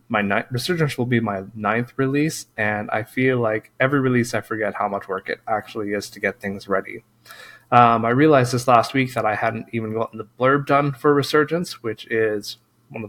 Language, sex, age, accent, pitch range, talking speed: English, male, 20-39, American, 110-130 Hz, 205 wpm